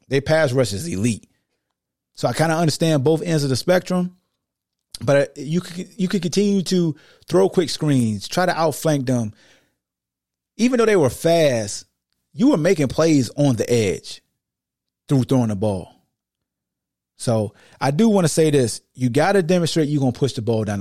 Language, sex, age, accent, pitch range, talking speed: English, male, 30-49, American, 125-180 Hz, 180 wpm